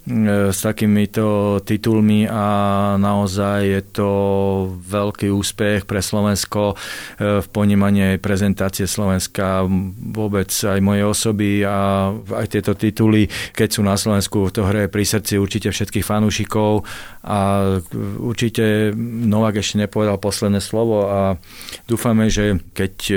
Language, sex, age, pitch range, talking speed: Slovak, male, 40-59, 100-110 Hz, 115 wpm